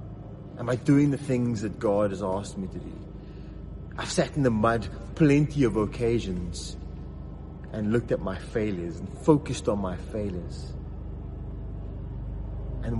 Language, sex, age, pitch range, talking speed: English, male, 30-49, 95-125 Hz, 145 wpm